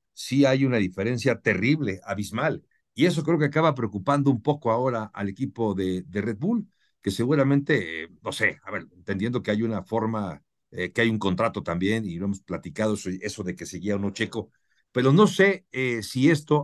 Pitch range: 105-145 Hz